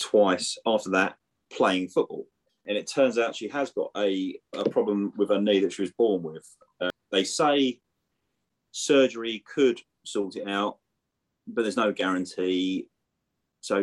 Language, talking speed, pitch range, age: English, 155 wpm, 95-115 Hz, 30-49